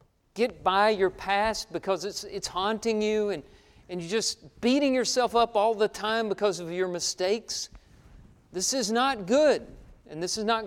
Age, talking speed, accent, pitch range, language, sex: 50-69, 175 wpm, American, 185-230 Hz, English, male